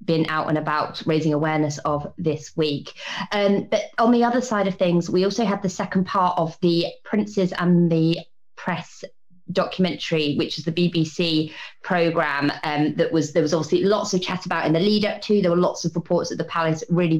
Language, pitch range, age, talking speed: English, 150-180 Hz, 30-49, 205 wpm